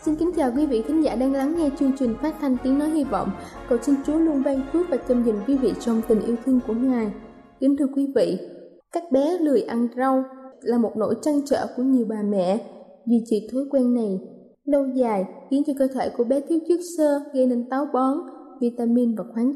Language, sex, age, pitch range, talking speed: Vietnamese, female, 10-29, 235-290 Hz, 235 wpm